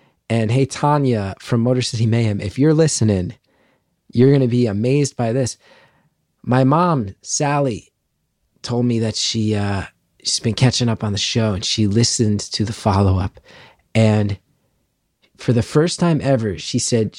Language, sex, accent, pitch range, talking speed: English, male, American, 105-135 Hz, 165 wpm